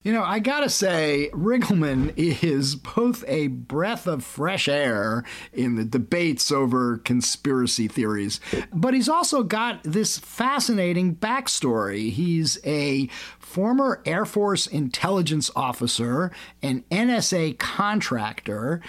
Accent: American